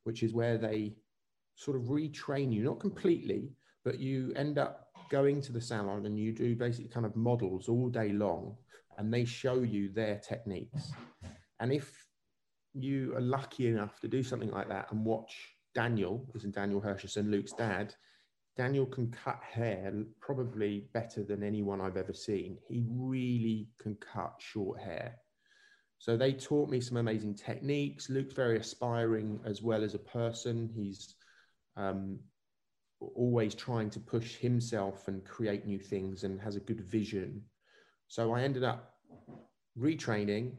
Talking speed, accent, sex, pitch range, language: 155 wpm, British, male, 105-125 Hz, English